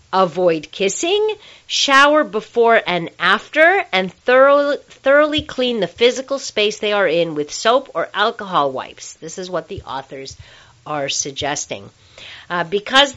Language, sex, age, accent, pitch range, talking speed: English, female, 40-59, American, 165-230 Hz, 135 wpm